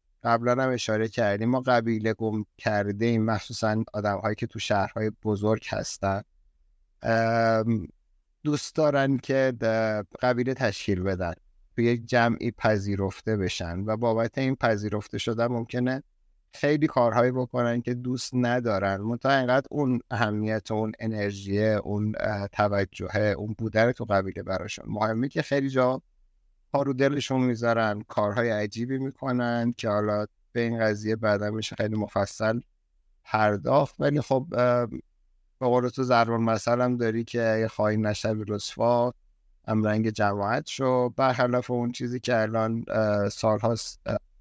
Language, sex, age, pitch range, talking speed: Persian, male, 50-69, 105-125 Hz, 130 wpm